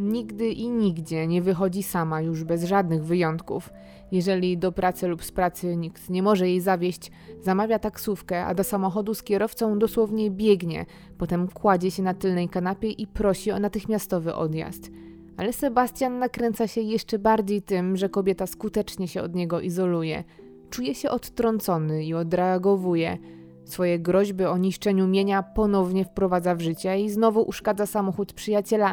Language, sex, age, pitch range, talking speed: Polish, female, 20-39, 175-210 Hz, 155 wpm